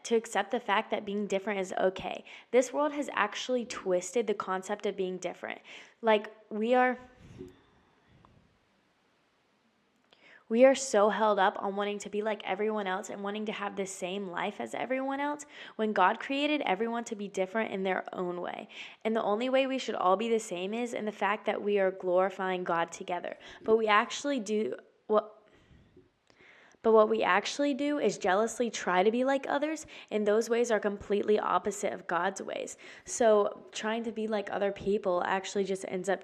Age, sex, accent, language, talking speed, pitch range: 10-29, female, American, English, 185 wpm, 190-230 Hz